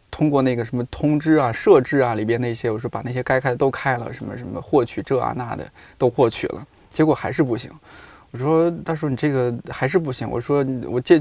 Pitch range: 120-150 Hz